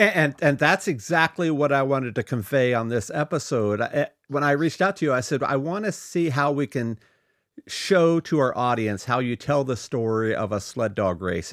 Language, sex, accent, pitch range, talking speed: English, male, American, 115-155 Hz, 225 wpm